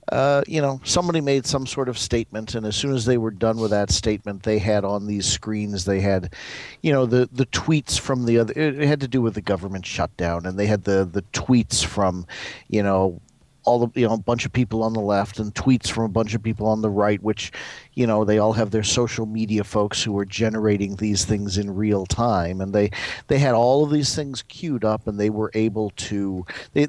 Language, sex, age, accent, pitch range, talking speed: English, male, 50-69, American, 100-120 Hz, 235 wpm